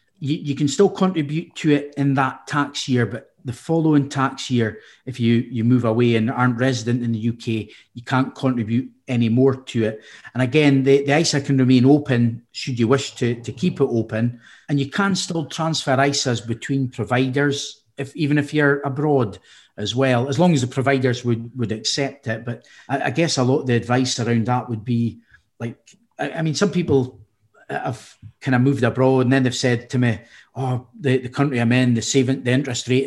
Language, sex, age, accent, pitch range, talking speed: English, male, 40-59, British, 120-140 Hz, 210 wpm